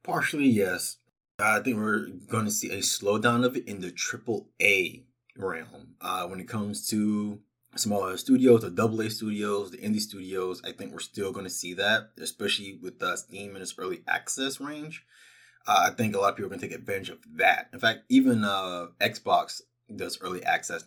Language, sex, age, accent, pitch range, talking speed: English, male, 20-39, American, 100-130 Hz, 195 wpm